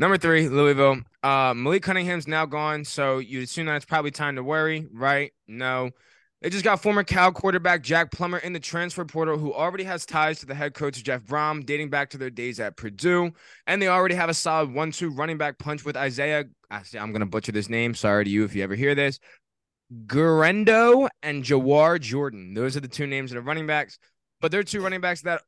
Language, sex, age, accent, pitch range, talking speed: English, male, 20-39, American, 135-170 Hz, 220 wpm